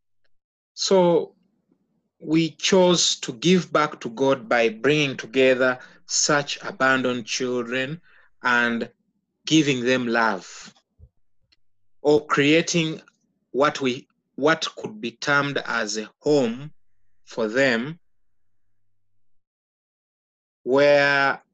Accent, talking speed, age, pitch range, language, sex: Nigerian, 90 wpm, 30-49, 115-165 Hz, English, male